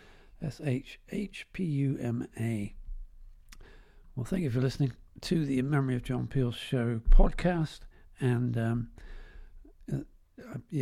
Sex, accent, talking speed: male, British, 95 wpm